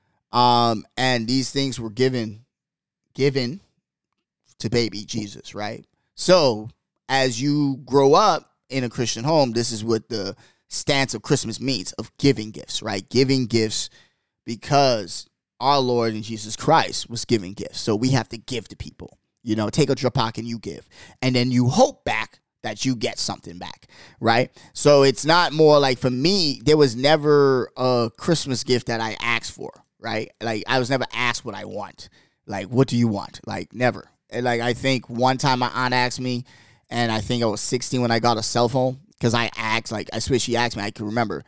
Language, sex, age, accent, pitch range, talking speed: English, male, 20-39, American, 115-135 Hz, 200 wpm